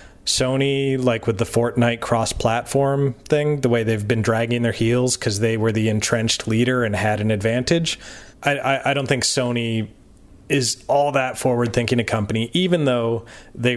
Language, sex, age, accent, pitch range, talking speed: English, male, 30-49, American, 105-125 Hz, 170 wpm